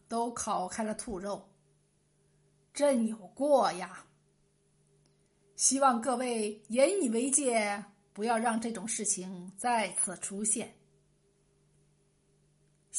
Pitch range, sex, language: 210-300 Hz, female, Chinese